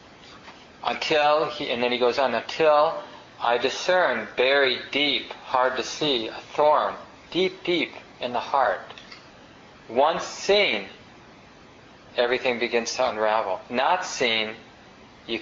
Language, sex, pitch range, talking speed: English, male, 115-145 Hz, 120 wpm